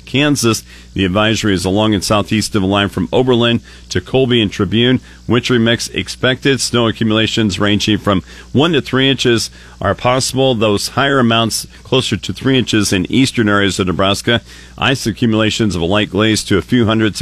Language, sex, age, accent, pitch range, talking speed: English, male, 40-59, American, 100-120 Hz, 180 wpm